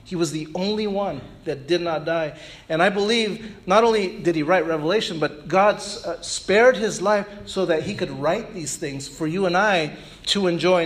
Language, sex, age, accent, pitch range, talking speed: English, male, 40-59, American, 165-220 Hz, 200 wpm